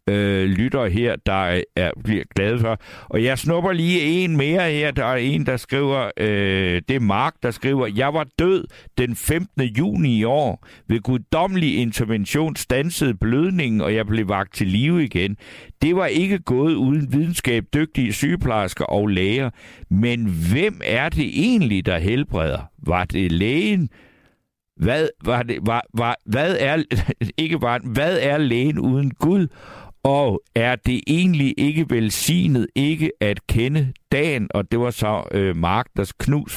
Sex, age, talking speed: male, 60-79, 160 wpm